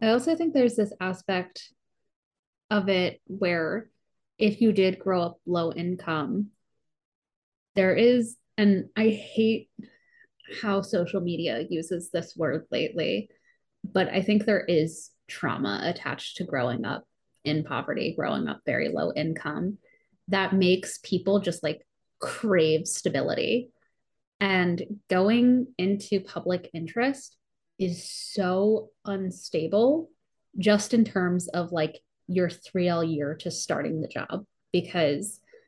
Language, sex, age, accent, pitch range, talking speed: English, female, 20-39, American, 170-210 Hz, 125 wpm